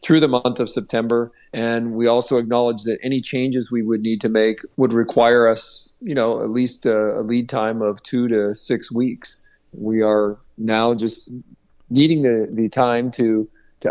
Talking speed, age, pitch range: 185 wpm, 50-69, 110-125 Hz